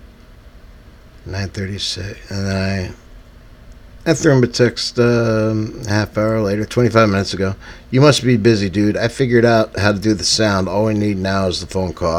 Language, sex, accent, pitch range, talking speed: English, male, American, 80-110 Hz, 185 wpm